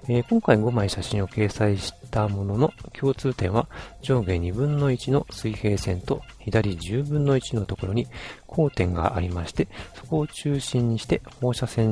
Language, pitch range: Japanese, 95-130 Hz